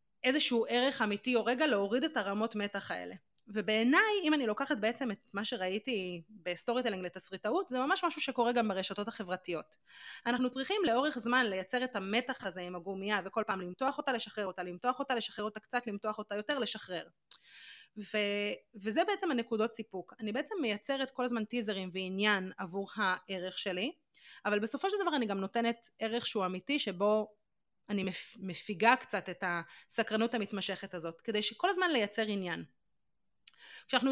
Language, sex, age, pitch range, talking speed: Hebrew, female, 30-49, 195-255 Hz, 160 wpm